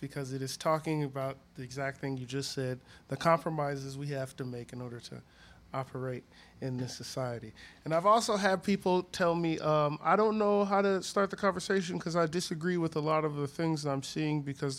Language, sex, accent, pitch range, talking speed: English, male, American, 135-160 Hz, 210 wpm